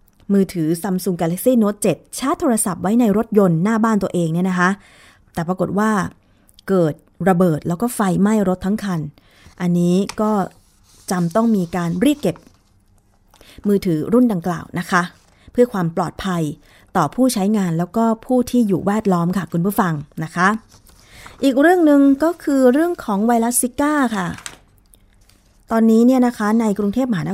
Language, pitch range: Thai, 180-235 Hz